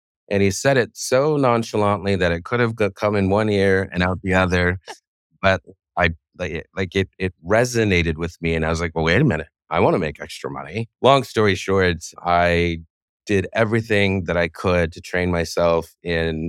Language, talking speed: English, 195 wpm